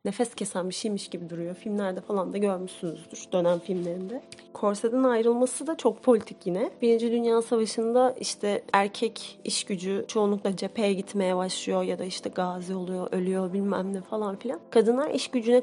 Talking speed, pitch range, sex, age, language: 160 wpm, 190-235 Hz, female, 30-49, Turkish